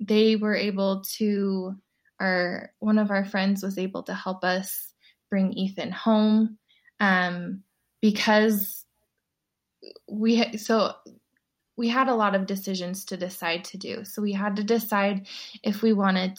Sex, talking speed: female, 145 wpm